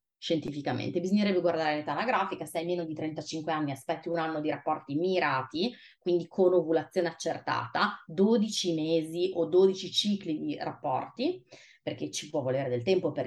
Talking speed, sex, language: 160 wpm, female, Italian